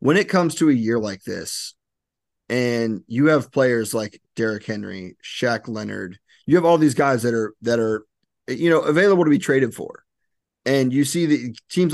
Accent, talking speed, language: American, 190 wpm, English